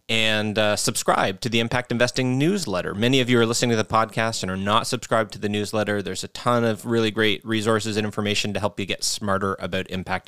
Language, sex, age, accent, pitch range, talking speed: English, male, 30-49, American, 100-125 Hz, 230 wpm